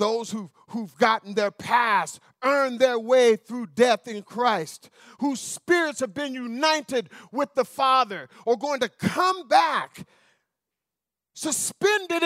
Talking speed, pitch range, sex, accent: 125 wpm, 250-305 Hz, male, American